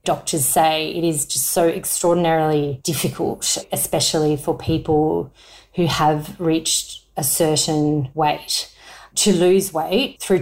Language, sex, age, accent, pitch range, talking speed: English, female, 30-49, Australian, 155-185 Hz, 120 wpm